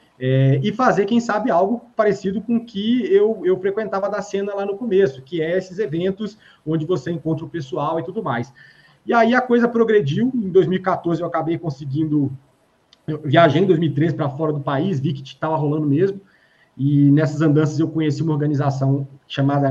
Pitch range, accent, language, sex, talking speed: 140-185 Hz, Brazilian, Portuguese, male, 180 wpm